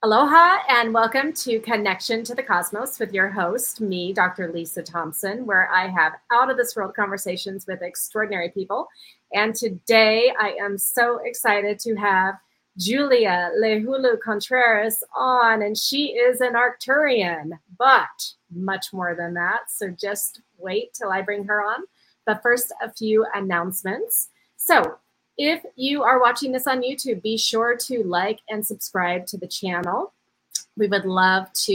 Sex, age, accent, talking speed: female, 30-49, American, 145 wpm